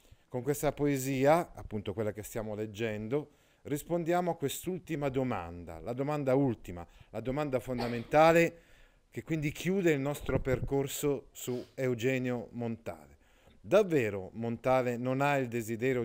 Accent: native